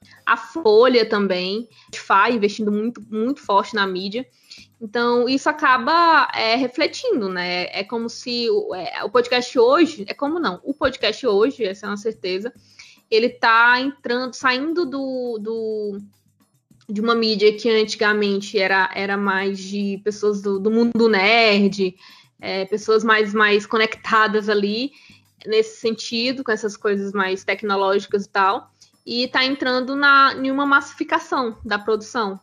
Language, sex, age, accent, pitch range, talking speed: Portuguese, female, 20-39, Brazilian, 210-290 Hz, 135 wpm